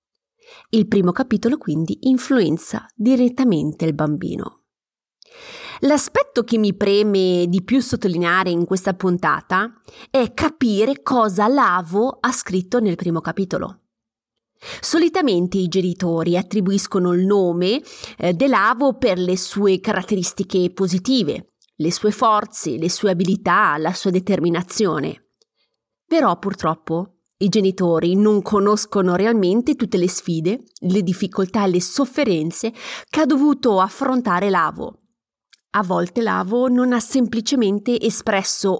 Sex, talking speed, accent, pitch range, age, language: female, 115 wpm, native, 180-240 Hz, 30-49, Italian